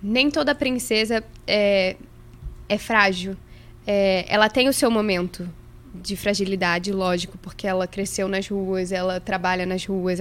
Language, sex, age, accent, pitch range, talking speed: Portuguese, female, 10-29, Brazilian, 190-235 Hz, 140 wpm